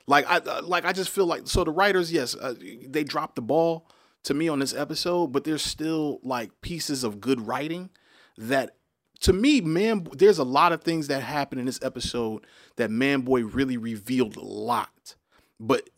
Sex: male